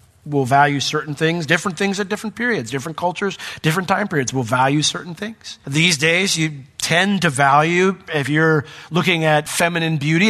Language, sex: English, male